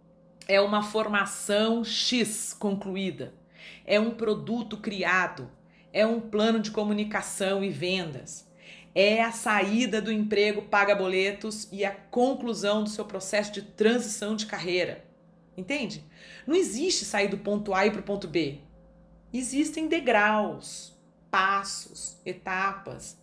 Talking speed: 125 wpm